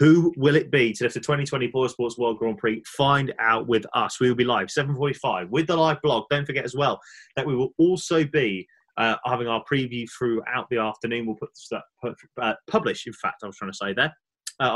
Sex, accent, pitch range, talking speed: male, British, 115-150 Hz, 225 wpm